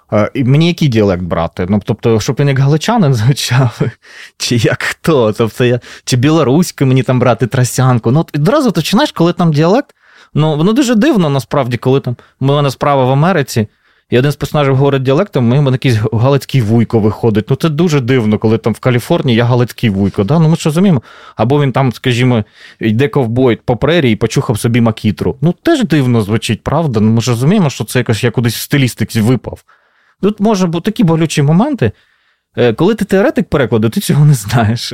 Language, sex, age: Ukrainian, male, 20-39